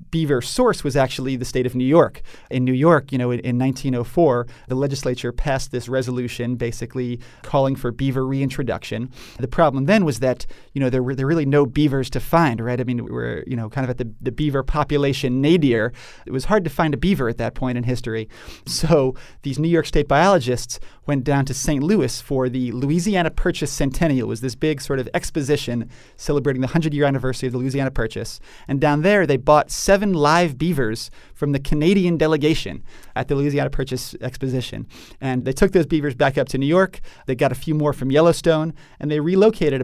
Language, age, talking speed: English, 30-49, 210 wpm